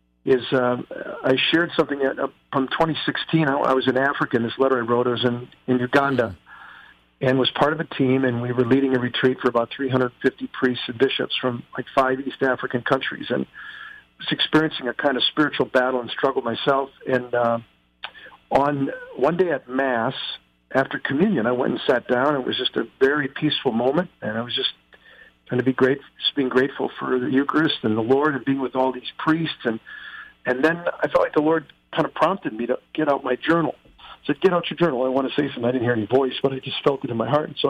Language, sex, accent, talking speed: English, male, American, 235 wpm